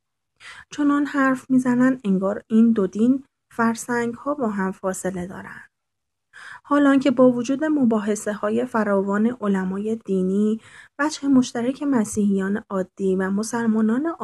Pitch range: 190-245 Hz